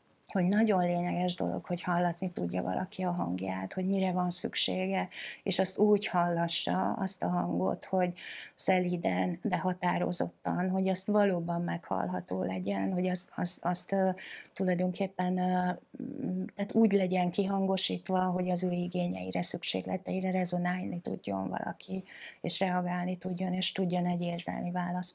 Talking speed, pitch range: 130 wpm, 175-190 Hz